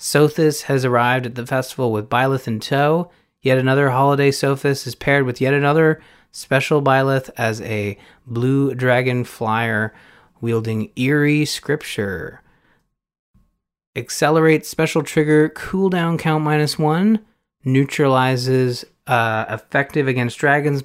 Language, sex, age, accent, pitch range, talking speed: English, male, 30-49, American, 115-140 Hz, 120 wpm